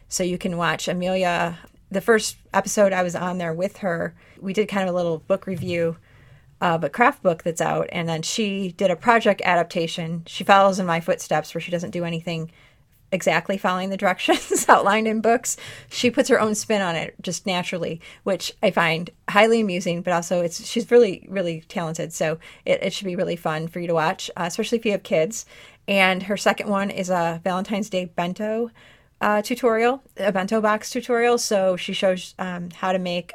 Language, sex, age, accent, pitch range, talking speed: English, female, 30-49, American, 165-200 Hz, 205 wpm